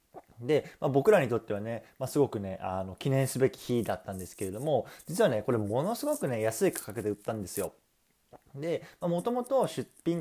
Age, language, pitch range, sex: 20-39, Japanese, 105-165 Hz, male